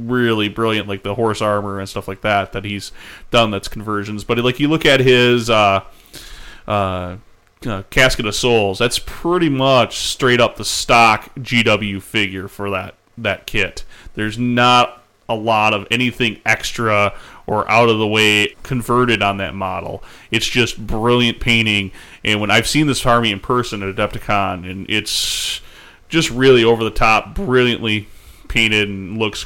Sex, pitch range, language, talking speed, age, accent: male, 100-120 Hz, English, 165 wpm, 30-49, American